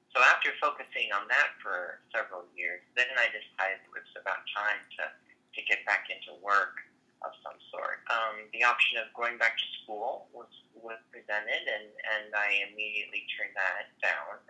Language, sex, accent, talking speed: English, male, American, 175 wpm